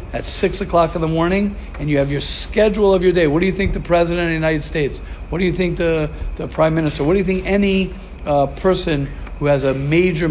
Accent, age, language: American, 50-69, English